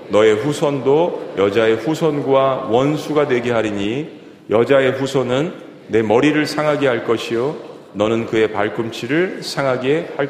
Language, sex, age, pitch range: Korean, male, 40-59, 130-165 Hz